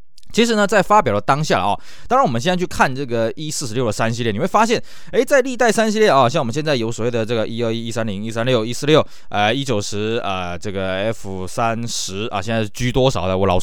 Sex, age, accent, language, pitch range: male, 20-39, native, Chinese, 110-175 Hz